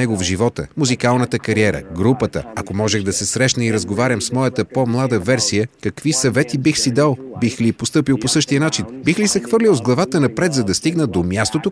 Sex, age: male, 30-49